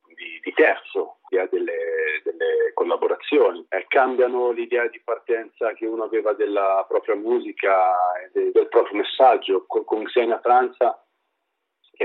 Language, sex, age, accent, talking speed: Italian, male, 40-59, native, 135 wpm